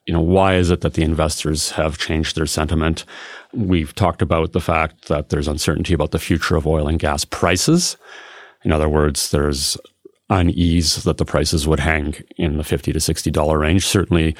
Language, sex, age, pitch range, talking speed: English, male, 30-49, 80-95 Hz, 190 wpm